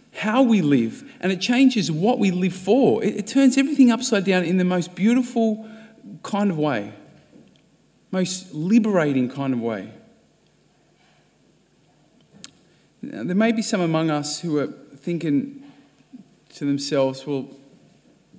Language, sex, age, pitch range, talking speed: English, male, 40-59, 145-215 Hz, 130 wpm